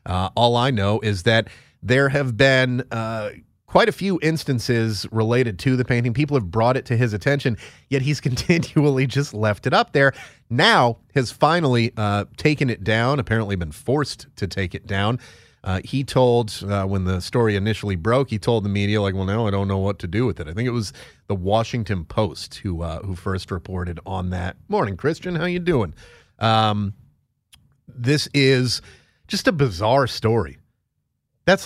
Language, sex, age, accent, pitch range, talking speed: English, male, 30-49, American, 100-140 Hz, 185 wpm